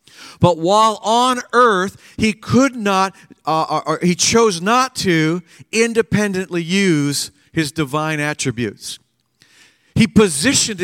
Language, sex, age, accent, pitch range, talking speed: English, male, 50-69, American, 135-175 Hz, 110 wpm